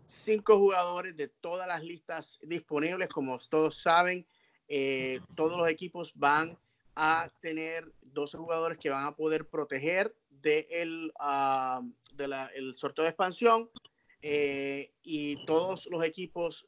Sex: male